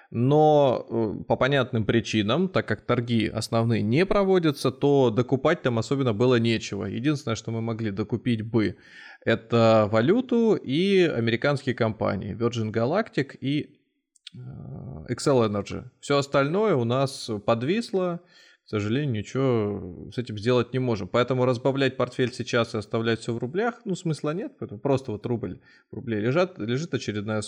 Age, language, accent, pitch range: 20-39, Russian, native, 110-140 Hz